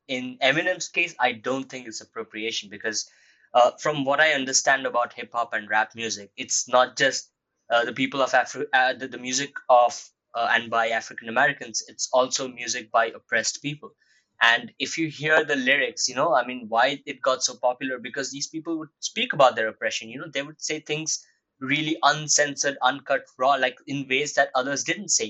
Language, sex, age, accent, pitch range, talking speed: English, male, 20-39, Indian, 125-160 Hz, 200 wpm